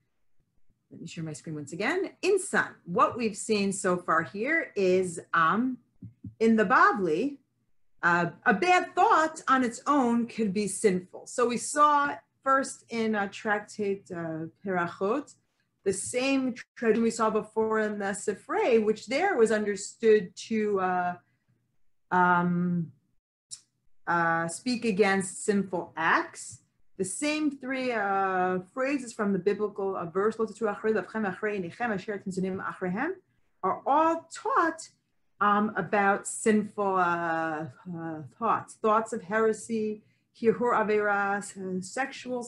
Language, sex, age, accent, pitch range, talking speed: English, female, 40-59, American, 185-240 Hz, 115 wpm